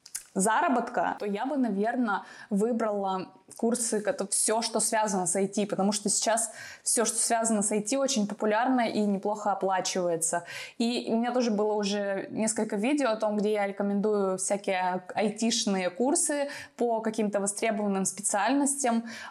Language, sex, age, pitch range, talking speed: Russian, female, 20-39, 200-235 Hz, 145 wpm